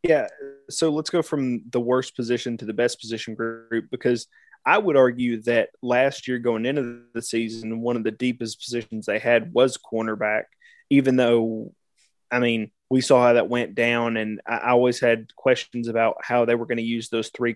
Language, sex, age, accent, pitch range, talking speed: English, male, 20-39, American, 120-135 Hz, 195 wpm